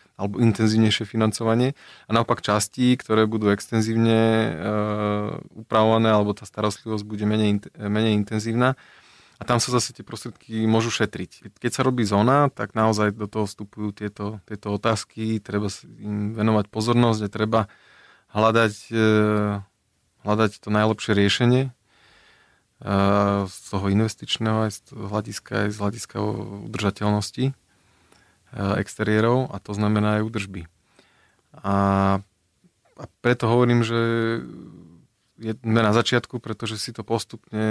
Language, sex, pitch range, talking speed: Slovak, male, 100-110 Hz, 130 wpm